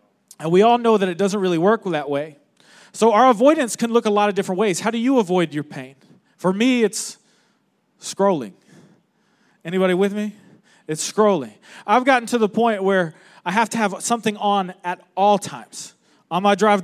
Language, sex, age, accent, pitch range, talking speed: English, male, 30-49, American, 175-220 Hz, 190 wpm